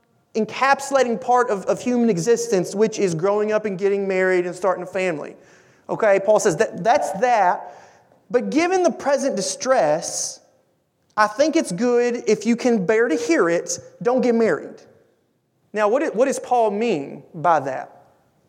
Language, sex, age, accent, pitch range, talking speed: English, male, 30-49, American, 205-260 Hz, 165 wpm